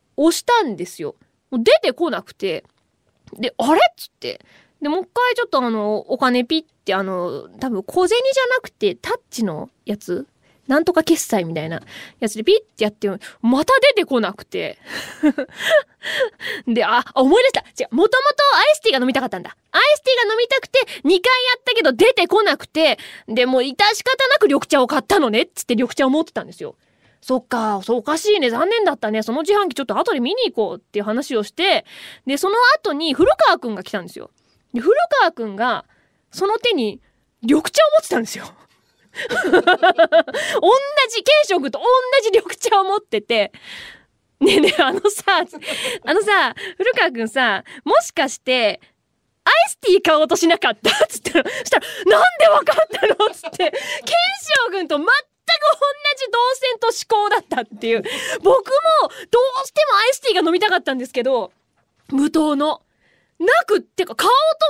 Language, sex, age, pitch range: Japanese, female, 20-39, 260-415 Hz